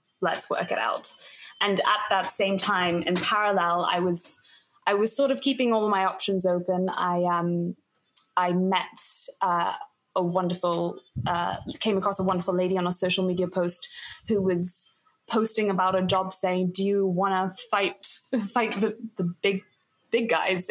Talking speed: 170 wpm